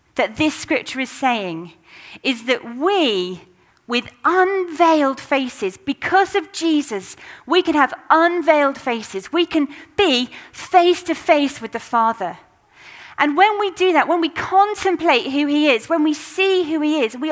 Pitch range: 245-315 Hz